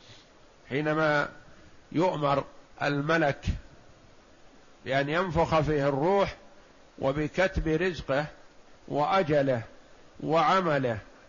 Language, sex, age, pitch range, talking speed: Arabic, male, 50-69, 140-175 Hz, 60 wpm